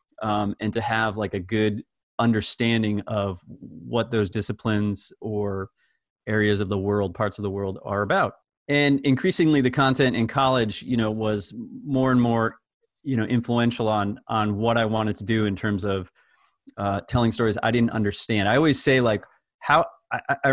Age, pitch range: 30-49, 105-125 Hz